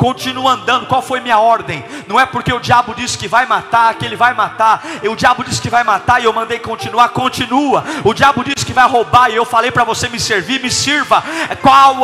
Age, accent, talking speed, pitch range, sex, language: 40-59, Brazilian, 235 wpm, 235-285 Hz, male, Portuguese